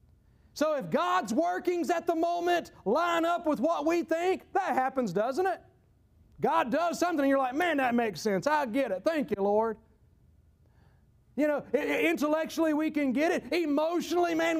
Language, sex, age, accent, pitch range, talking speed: English, male, 40-59, American, 235-320 Hz, 175 wpm